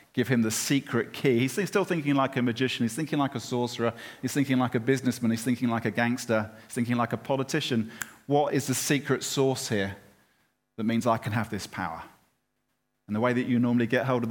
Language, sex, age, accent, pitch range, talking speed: English, male, 40-59, British, 110-130 Hz, 220 wpm